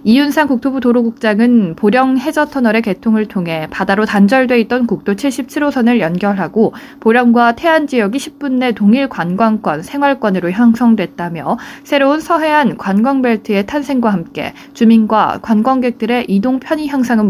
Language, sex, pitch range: Korean, female, 200-275 Hz